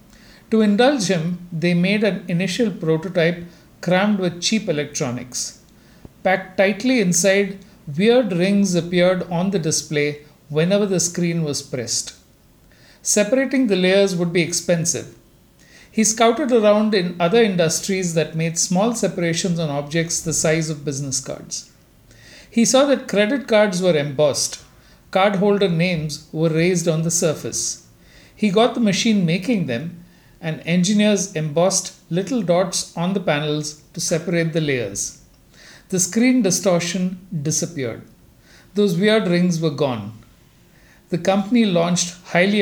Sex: male